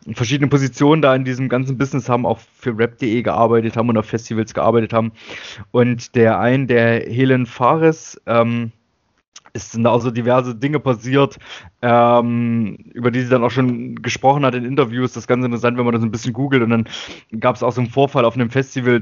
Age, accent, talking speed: 20-39, German, 200 wpm